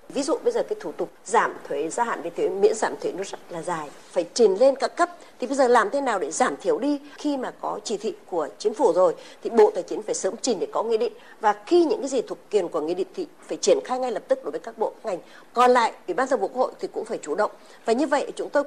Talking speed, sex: 310 wpm, female